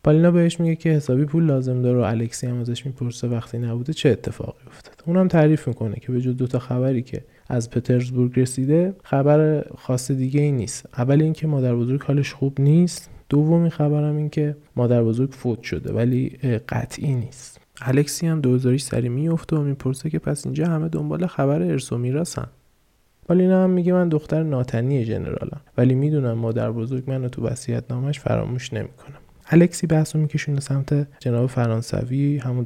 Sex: male